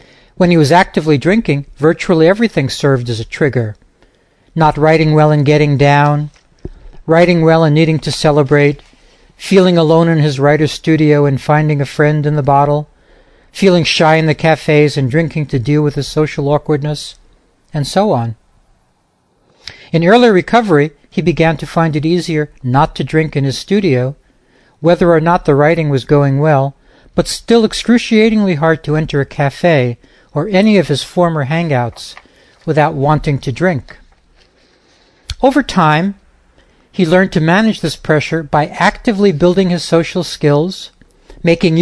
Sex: male